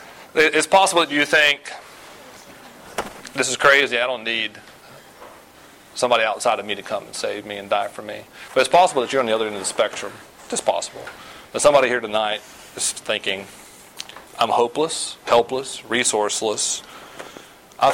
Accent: American